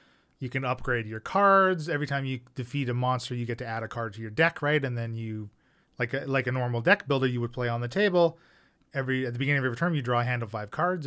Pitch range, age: 120-140 Hz, 30-49